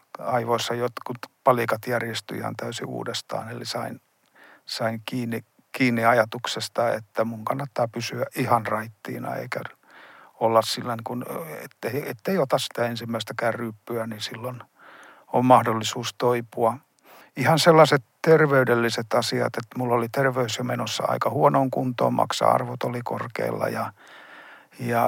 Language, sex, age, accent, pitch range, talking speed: Finnish, male, 50-69, native, 115-135 Hz, 120 wpm